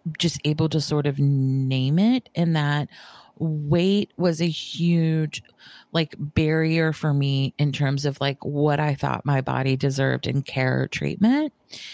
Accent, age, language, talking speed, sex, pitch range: American, 30-49, English, 150 wpm, female, 135-170 Hz